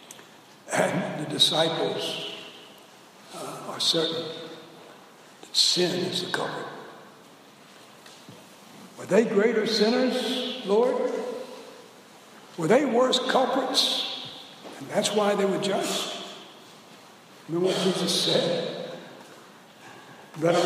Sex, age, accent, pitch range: male, 60-79, American, 165-225 Hz